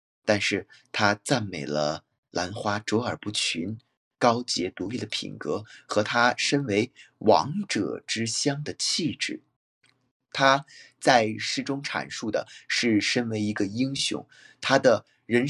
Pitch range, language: 105-130 Hz, Chinese